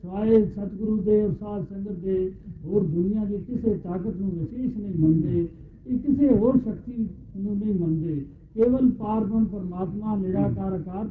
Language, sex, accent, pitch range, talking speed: Hindi, male, native, 185-220 Hz, 120 wpm